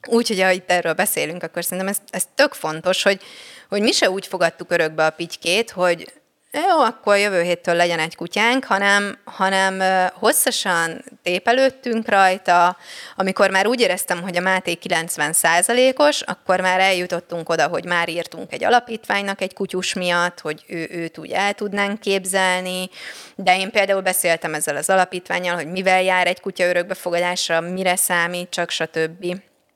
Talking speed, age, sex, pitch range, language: 155 wpm, 20-39, female, 170-210 Hz, Hungarian